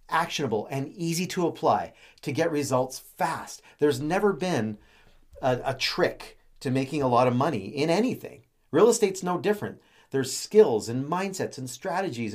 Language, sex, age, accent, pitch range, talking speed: English, male, 40-59, American, 120-170 Hz, 160 wpm